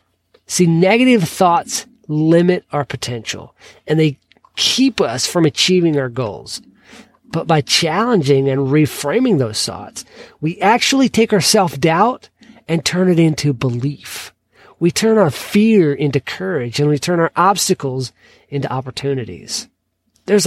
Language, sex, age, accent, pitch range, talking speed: English, male, 40-59, American, 140-195 Hz, 130 wpm